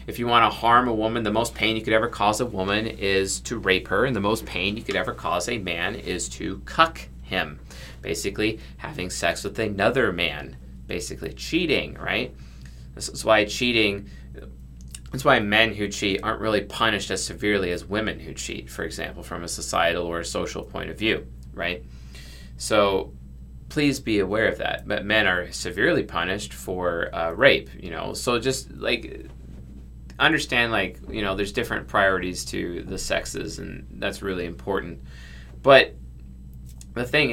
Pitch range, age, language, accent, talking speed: 65-110 Hz, 30-49, English, American, 175 wpm